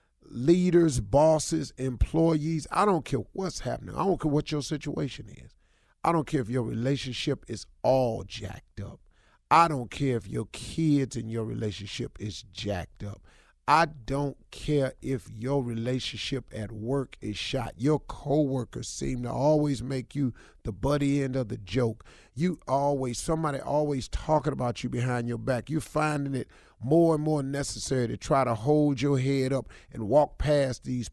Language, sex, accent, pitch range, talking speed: English, male, American, 110-150 Hz, 170 wpm